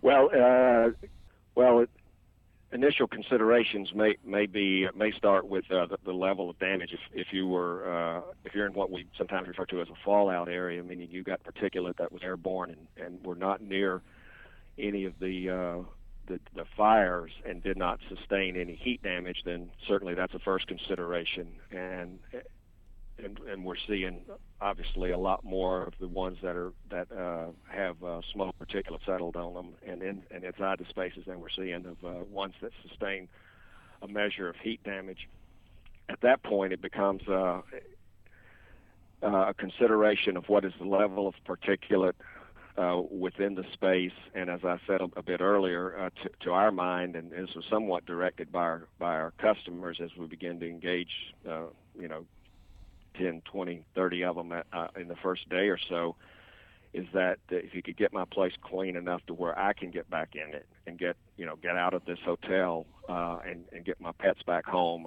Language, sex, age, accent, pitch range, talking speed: English, male, 50-69, American, 85-95 Hz, 190 wpm